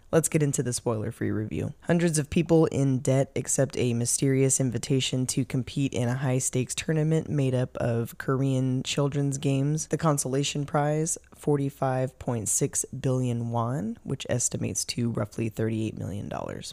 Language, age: English, 20-39